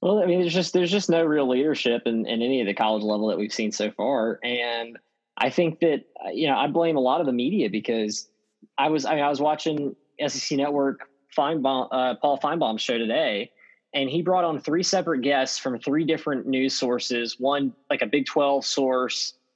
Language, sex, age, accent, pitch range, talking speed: English, male, 20-39, American, 125-160 Hz, 210 wpm